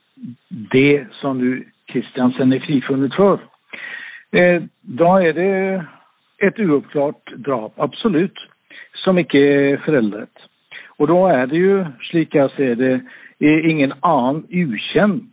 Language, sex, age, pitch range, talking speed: English, male, 60-79, 130-160 Hz, 120 wpm